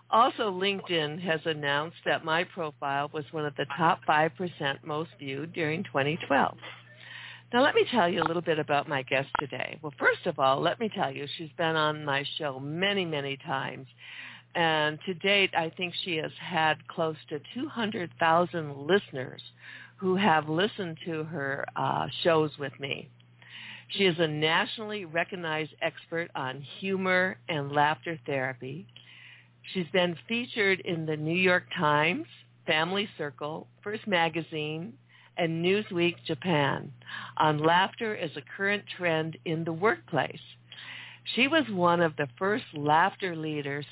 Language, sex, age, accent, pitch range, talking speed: English, female, 60-79, American, 145-180 Hz, 150 wpm